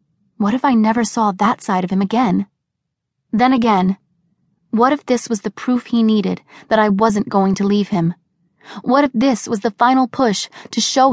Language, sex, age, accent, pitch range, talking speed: English, female, 20-39, American, 185-240 Hz, 195 wpm